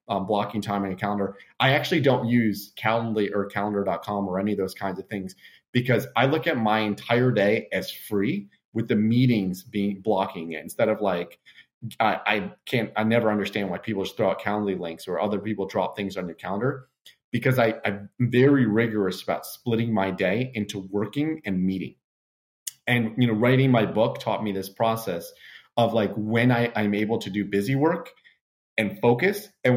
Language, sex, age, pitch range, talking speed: English, male, 30-49, 100-120 Hz, 185 wpm